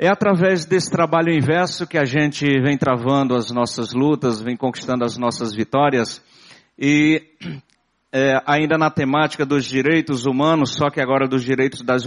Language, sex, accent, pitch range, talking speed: Portuguese, male, Brazilian, 125-165 Hz, 160 wpm